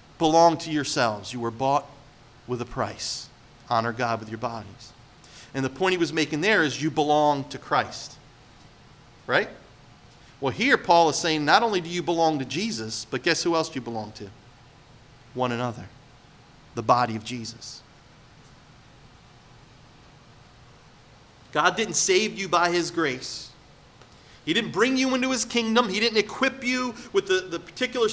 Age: 40-59